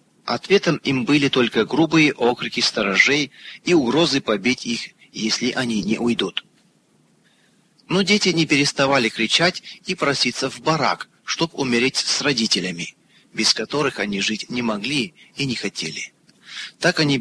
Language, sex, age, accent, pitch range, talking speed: Russian, male, 30-49, native, 110-155 Hz, 135 wpm